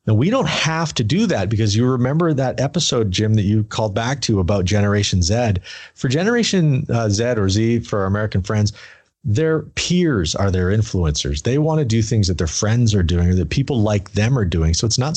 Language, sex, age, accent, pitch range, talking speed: English, male, 40-59, American, 100-130 Hz, 220 wpm